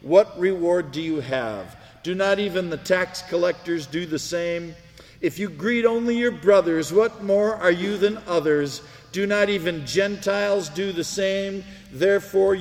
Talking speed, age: 160 wpm, 50-69